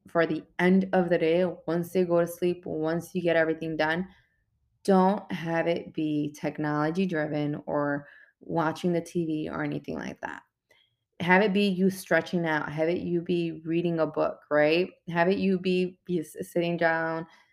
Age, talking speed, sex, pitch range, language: 20-39, 170 wpm, female, 160-190 Hz, English